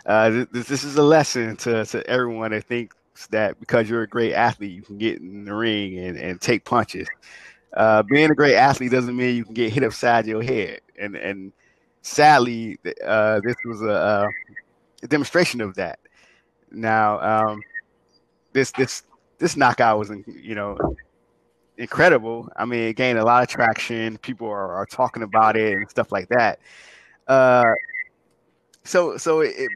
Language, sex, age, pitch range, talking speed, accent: English, male, 20-39, 110-130 Hz, 170 wpm, American